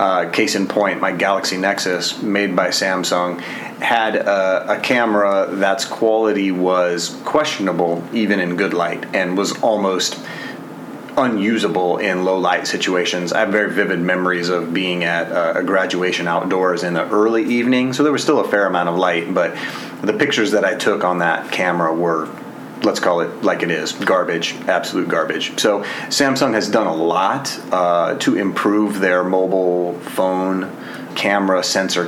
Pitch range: 90-100 Hz